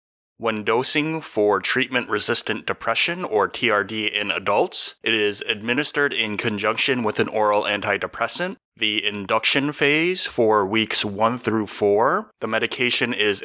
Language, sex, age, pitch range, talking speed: English, male, 30-49, 105-140 Hz, 130 wpm